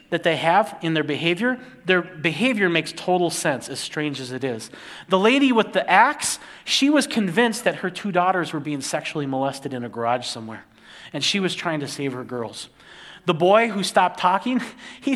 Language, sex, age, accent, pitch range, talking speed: English, male, 30-49, American, 145-195 Hz, 200 wpm